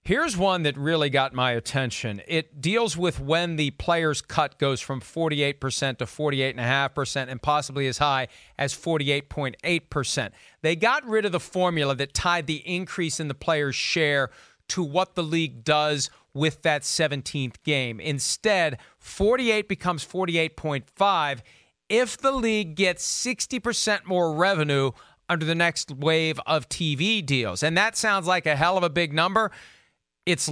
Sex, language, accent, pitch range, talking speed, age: male, English, American, 140-175 Hz, 150 wpm, 40-59